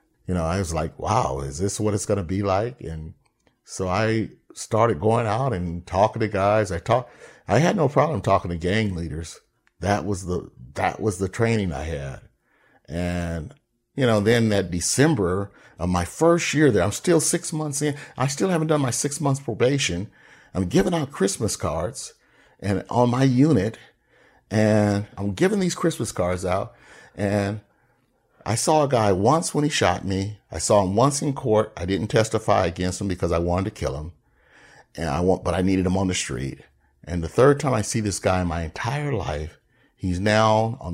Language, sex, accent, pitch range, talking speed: English, male, American, 85-115 Hz, 195 wpm